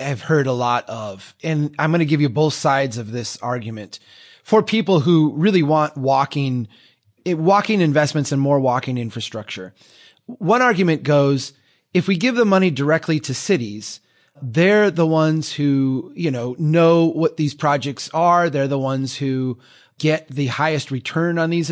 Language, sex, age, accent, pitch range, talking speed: English, male, 30-49, American, 135-165 Hz, 165 wpm